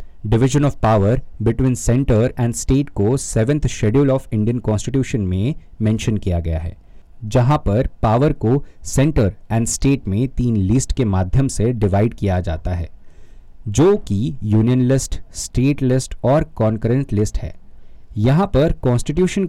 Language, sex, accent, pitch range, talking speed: Hindi, male, native, 105-140 Hz, 150 wpm